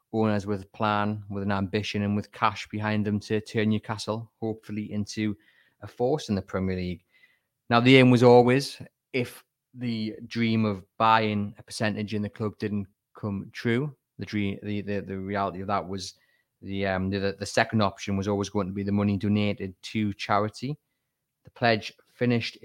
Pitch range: 100-115 Hz